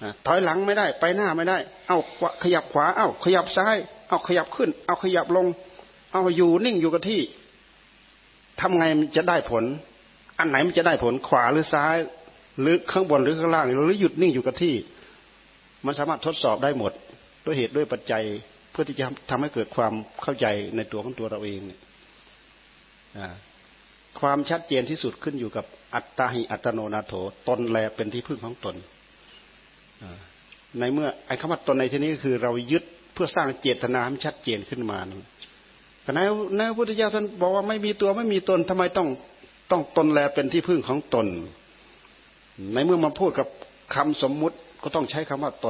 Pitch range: 130-175 Hz